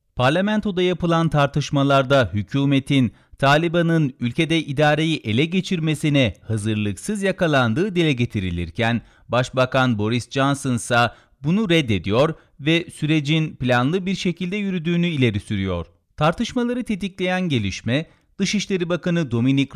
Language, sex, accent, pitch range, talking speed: Turkish, male, native, 115-170 Hz, 100 wpm